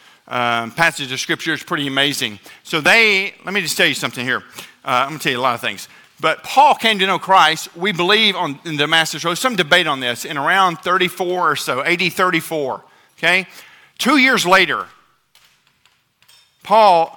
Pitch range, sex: 140-180 Hz, male